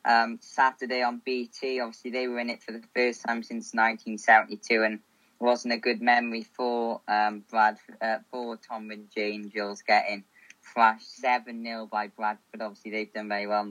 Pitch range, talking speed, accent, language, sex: 115-140 Hz, 180 wpm, British, English, female